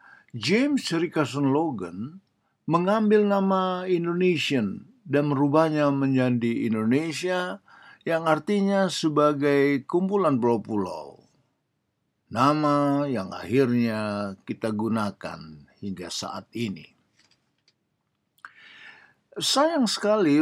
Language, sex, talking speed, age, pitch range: Indonesian, male, 75 wpm, 50-69, 115-165 Hz